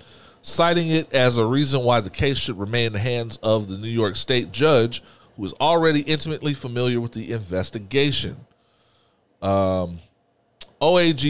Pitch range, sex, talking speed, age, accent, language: 100-130 Hz, male, 155 wpm, 40-59, American, English